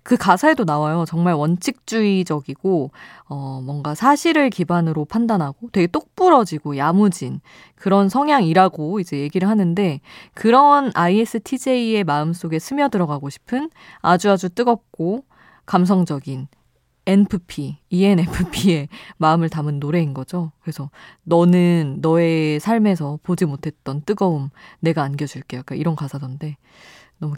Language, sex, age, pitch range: Korean, female, 20-39, 150-215 Hz